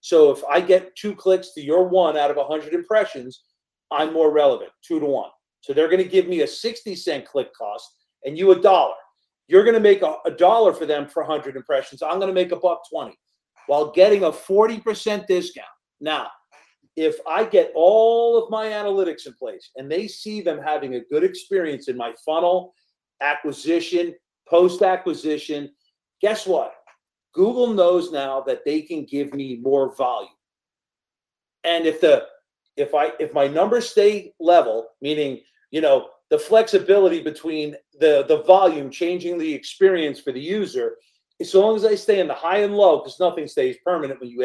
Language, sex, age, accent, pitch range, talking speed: English, male, 40-59, American, 150-235 Hz, 180 wpm